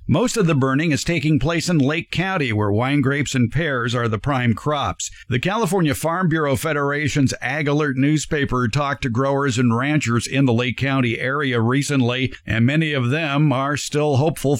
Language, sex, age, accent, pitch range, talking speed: English, male, 50-69, American, 115-145 Hz, 185 wpm